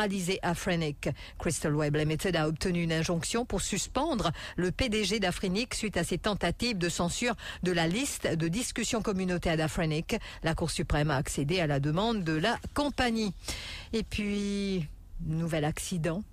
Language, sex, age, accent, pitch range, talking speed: English, female, 50-69, French, 165-205 Hz, 155 wpm